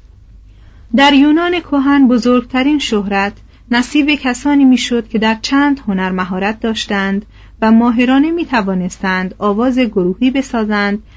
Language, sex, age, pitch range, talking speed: Persian, female, 40-59, 185-260 Hz, 105 wpm